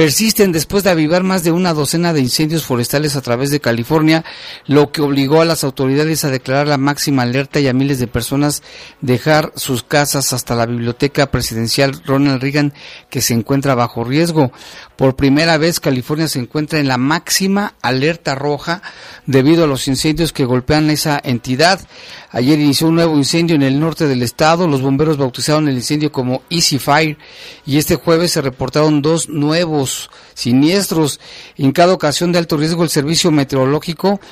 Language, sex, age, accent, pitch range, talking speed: Spanish, male, 50-69, Mexican, 135-160 Hz, 175 wpm